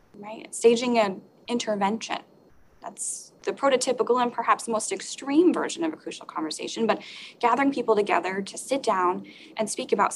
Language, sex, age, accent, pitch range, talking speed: English, female, 10-29, American, 205-275 Hz, 150 wpm